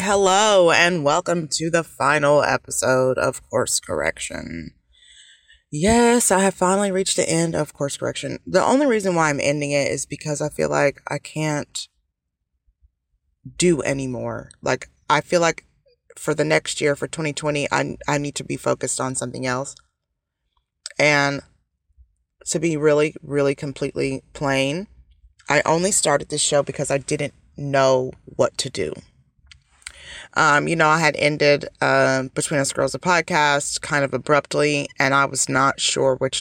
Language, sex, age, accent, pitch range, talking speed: English, female, 20-39, American, 130-160 Hz, 155 wpm